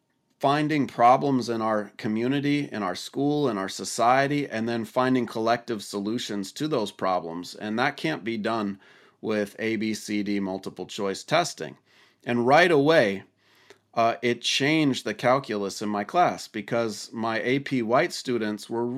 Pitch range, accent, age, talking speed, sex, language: 105-135 Hz, American, 30-49, 155 wpm, male, English